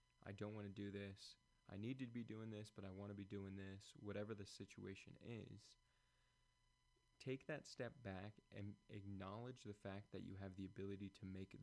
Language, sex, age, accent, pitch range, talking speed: English, male, 20-39, American, 100-125 Hz, 195 wpm